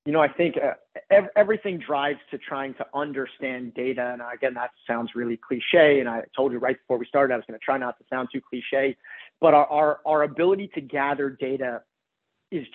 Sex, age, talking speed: male, 30-49, 215 wpm